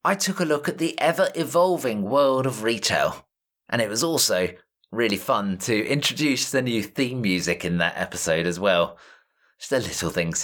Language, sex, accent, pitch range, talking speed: English, male, British, 115-175 Hz, 180 wpm